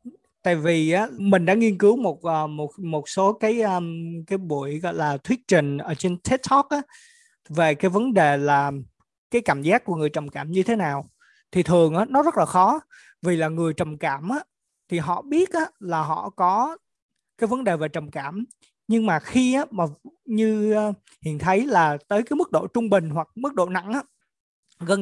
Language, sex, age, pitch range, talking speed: Vietnamese, male, 20-39, 160-235 Hz, 200 wpm